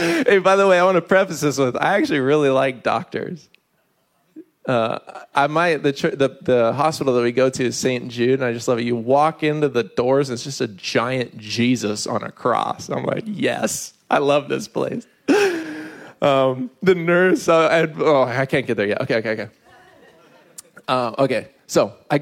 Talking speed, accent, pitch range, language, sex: 195 wpm, American, 115-145 Hz, English, male